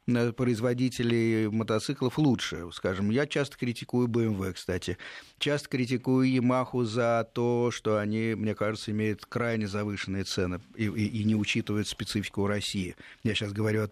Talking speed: 140 wpm